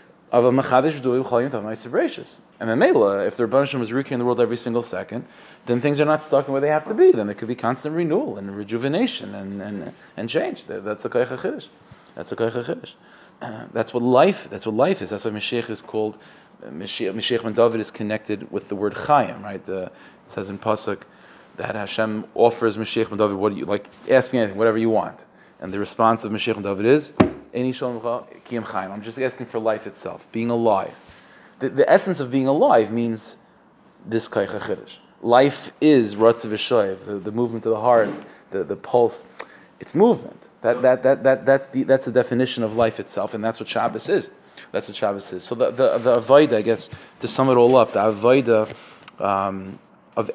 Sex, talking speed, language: male, 200 wpm, English